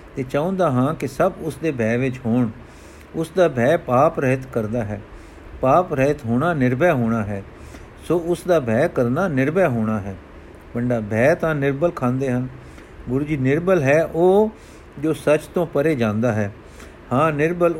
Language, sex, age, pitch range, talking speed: Punjabi, male, 50-69, 125-175 Hz, 170 wpm